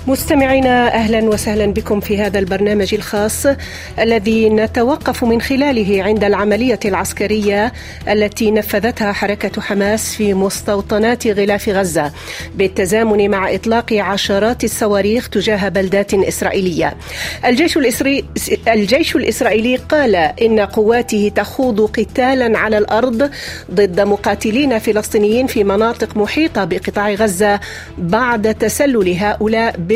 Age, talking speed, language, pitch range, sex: 40-59, 105 wpm, Arabic, 205-235 Hz, female